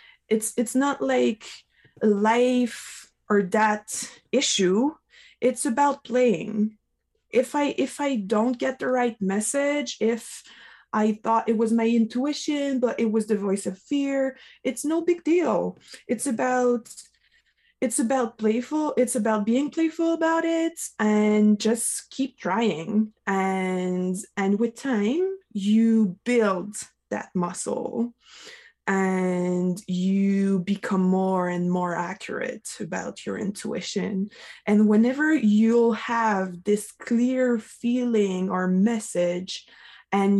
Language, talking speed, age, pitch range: English, 120 wpm, 20-39, 195-255 Hz